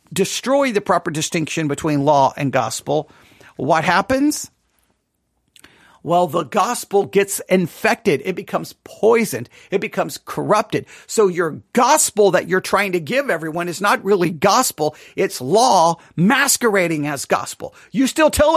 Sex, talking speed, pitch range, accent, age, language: male, 135 wpm, 150-225 Hz, American, 50-69, English